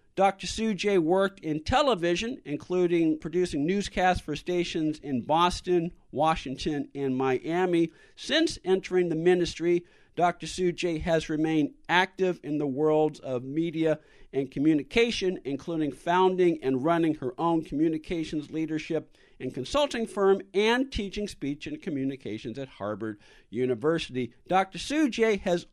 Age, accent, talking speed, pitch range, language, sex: 50-69, American, 130 wpm, 155-195 Hz, English, male